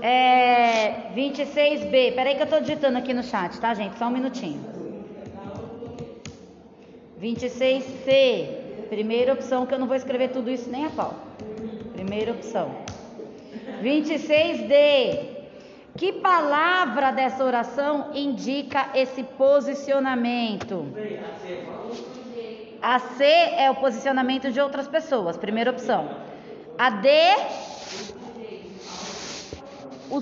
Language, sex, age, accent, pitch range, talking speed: Portuguese, female, 20-39, Brazilian, 235-290 Hz, 105 wpm